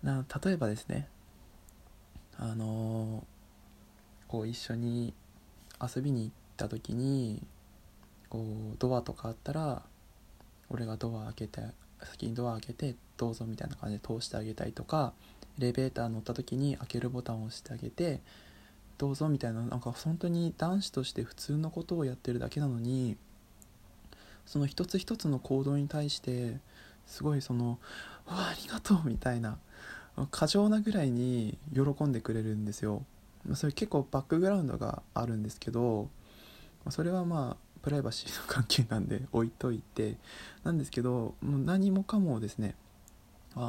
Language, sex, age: Japanese, male, 20-39